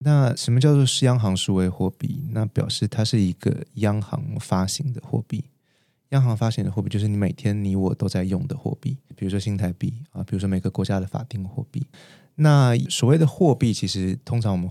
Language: Chinese